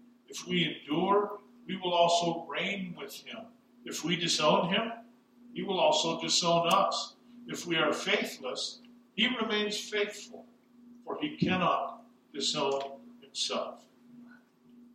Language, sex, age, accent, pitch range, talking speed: English, male, 50-69, American, 180-240 Hz, 120 wpm